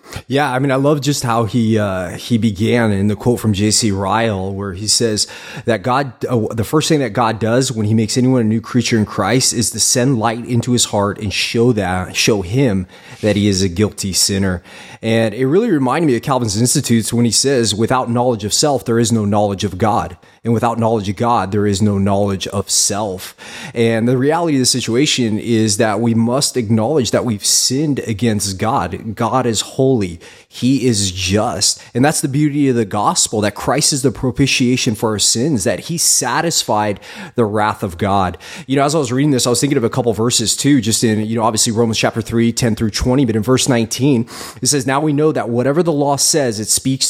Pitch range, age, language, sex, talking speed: 105-130 Hz, 20-39, English, male, 225 wpm